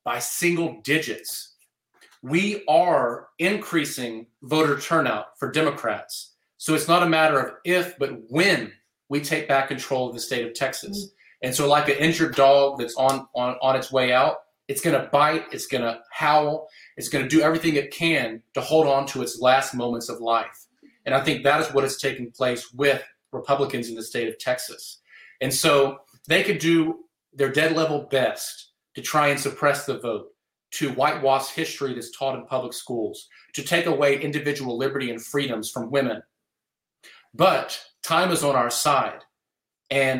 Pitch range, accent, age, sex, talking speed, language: 125-155 Hz, American, 30-49, male, 175 wpm, English